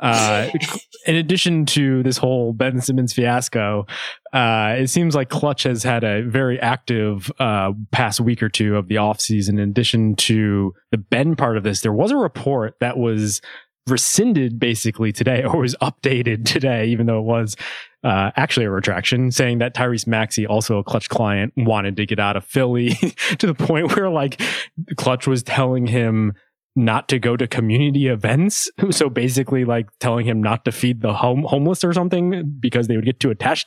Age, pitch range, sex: 20-39, 110-135 Hz, male